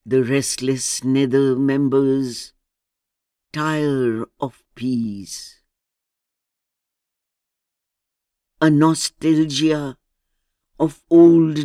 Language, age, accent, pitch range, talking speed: German, 60-79, Indian, 115-150 Hz, 55 wpm